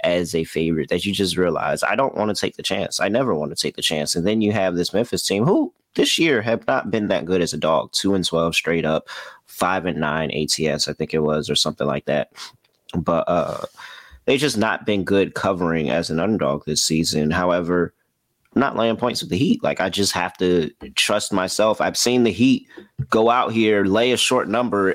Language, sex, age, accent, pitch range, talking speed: English, male, 30-49, American, 85-100 Hz, 225 wpm